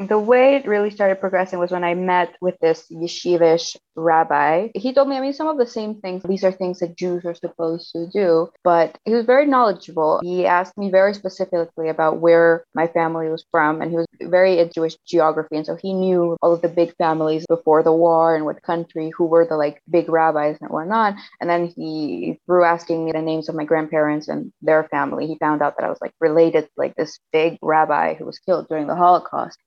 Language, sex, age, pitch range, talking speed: English, female, 20-39, 160-185 Hz, 225 wpm